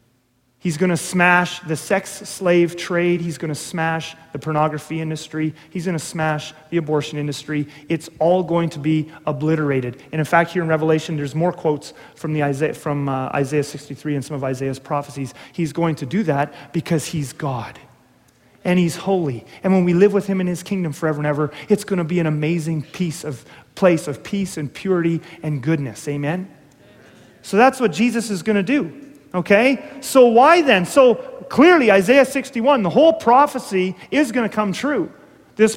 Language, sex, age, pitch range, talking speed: English, male, 30-49, 150-220 Hz, 185 wpm